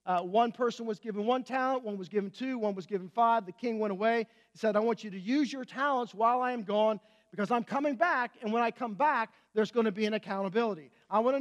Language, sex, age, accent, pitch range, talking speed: English, male, 40-59, American, 215-270 Hz, 265 wpm